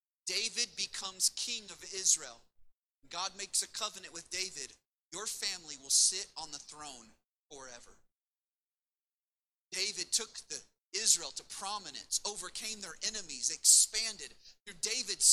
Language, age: English, 30-49